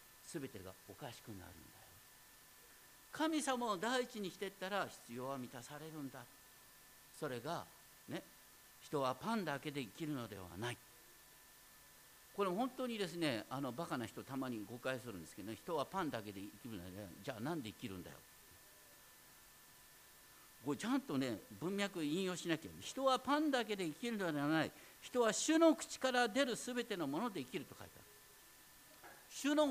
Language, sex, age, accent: Japanese, male, 50-69, native